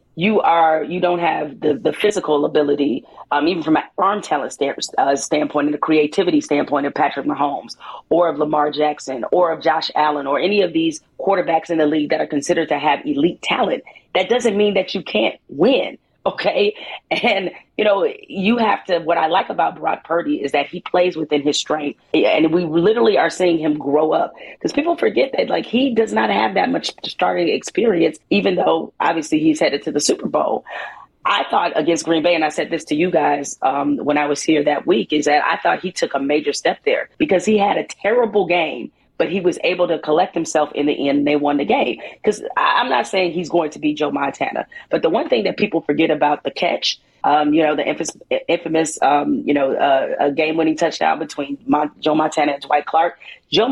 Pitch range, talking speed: 150-185 Hz, 220 wpm